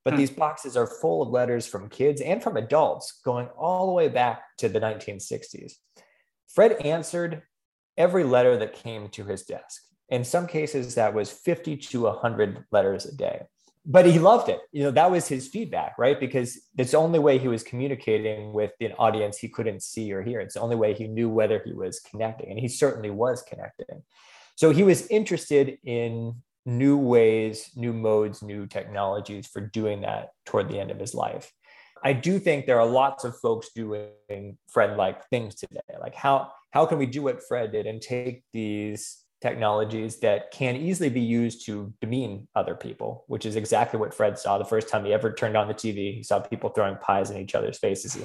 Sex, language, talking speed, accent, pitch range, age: male, English, 200 wpm, American, 110-140 Hz, 30-49